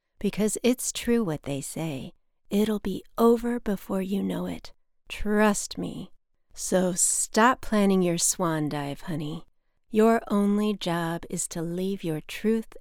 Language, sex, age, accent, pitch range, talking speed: English, female, 40-59, American, 180-220 Hz, 140 wpm